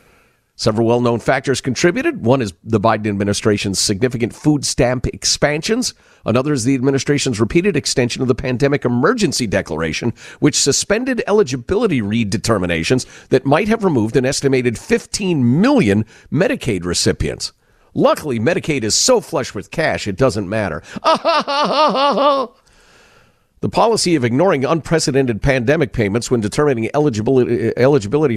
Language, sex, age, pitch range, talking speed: English, male, 50-69, 110-150 Hz, 125 wpm